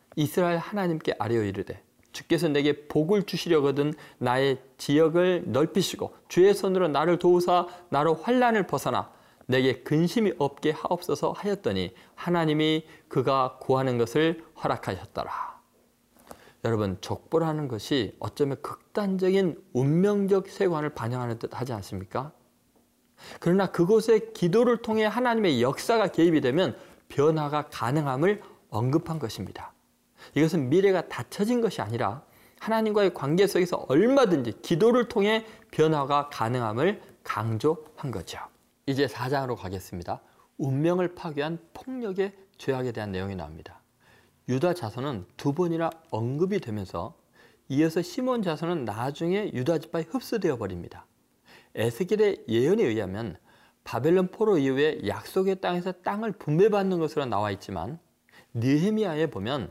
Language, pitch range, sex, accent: Korean, 130-190 Hz, male, native